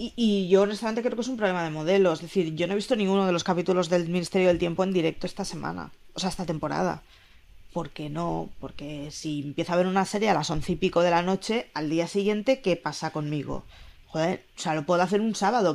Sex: female